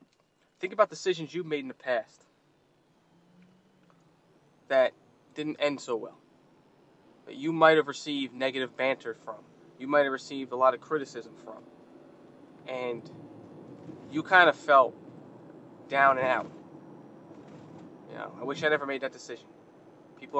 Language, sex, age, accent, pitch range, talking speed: English, male, 20-39, American, 130-160 Hz, 140 wpm